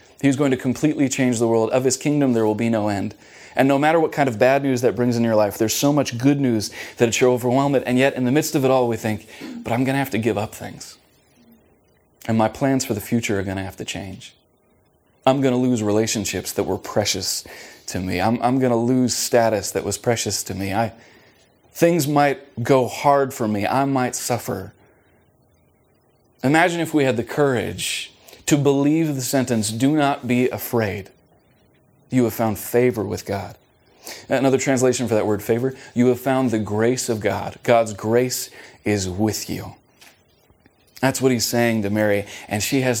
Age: 30-49